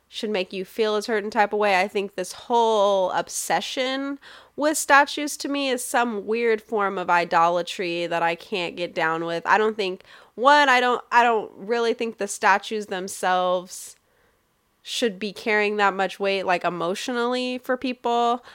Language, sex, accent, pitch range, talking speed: English, female, American, 185-225 Hz, 170 wpm